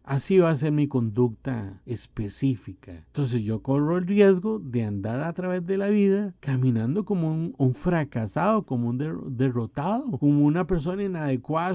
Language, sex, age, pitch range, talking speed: Spanish, male, 50-69, 130-180 Hz, 160 wpm